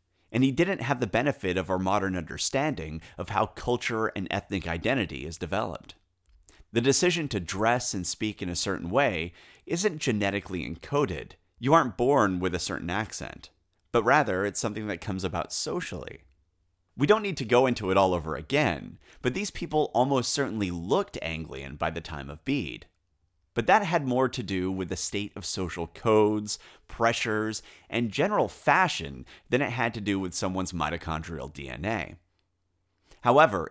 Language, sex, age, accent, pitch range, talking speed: English, male, 30-49, American, 85-115 Hz, 165 wpm